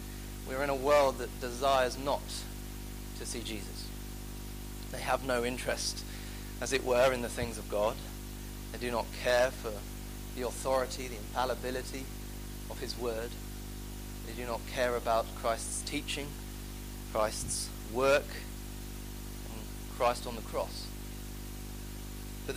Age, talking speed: 30-49, 135 wpm